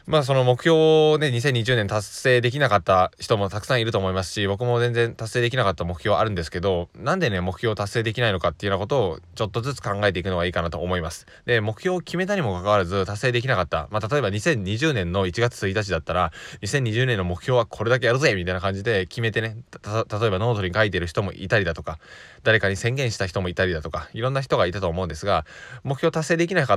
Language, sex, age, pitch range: Japanese, male, 20-39, 95-130 Hz